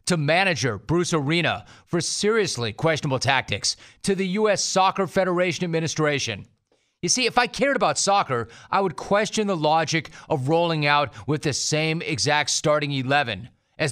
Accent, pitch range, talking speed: American, 140-175 Hz, 155 wpm